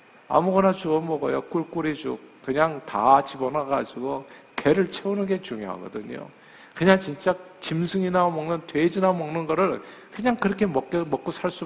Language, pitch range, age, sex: Korean, 135-185 Hz, 50-69, male